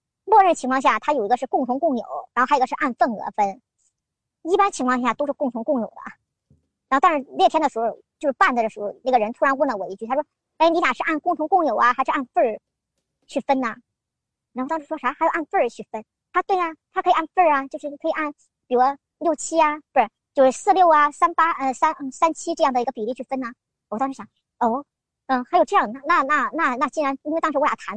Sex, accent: male, native